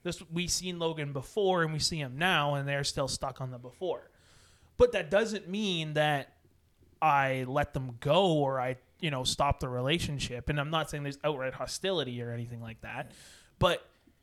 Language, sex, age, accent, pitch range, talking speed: English, male, 30-49, American, 135-170 Hz, 185 wpm